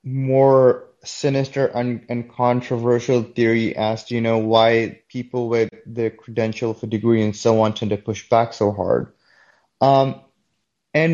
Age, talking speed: 20-39, 150 wpm